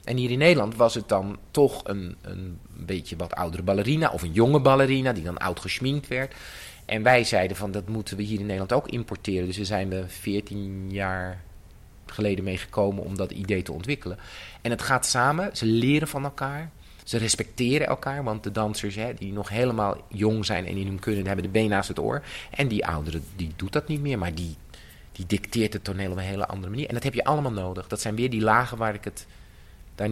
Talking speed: 230 wpm